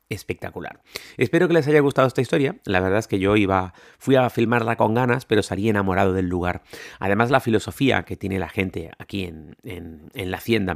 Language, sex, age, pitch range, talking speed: Spanish, male, 30-49, 100-120 Hz, 200 wpm